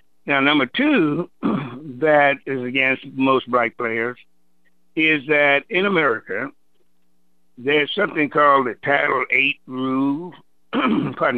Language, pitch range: English, 115-145 Hz